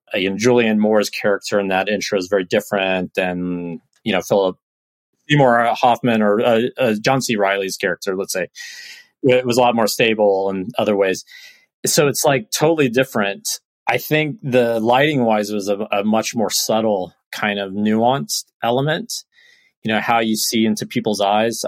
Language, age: English, 30-49